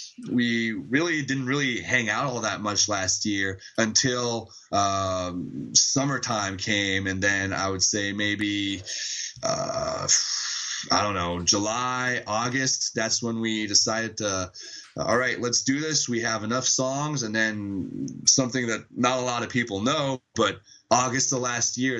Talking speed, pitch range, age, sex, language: 155 wpm, 105-125 Hz, 20-39, male, English